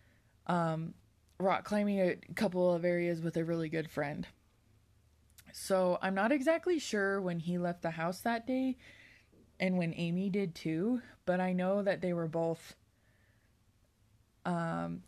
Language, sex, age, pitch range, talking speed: English, female, 20-39, 155-185 Hz, 145 wpm